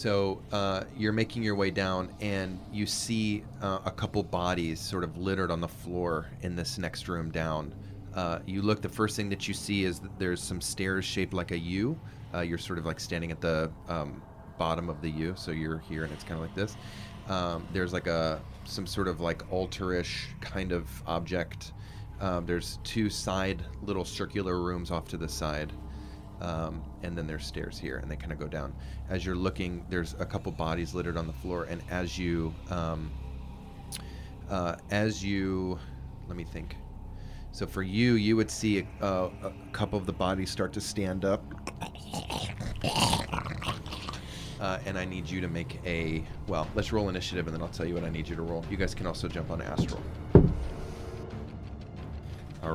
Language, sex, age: English, male, 30-49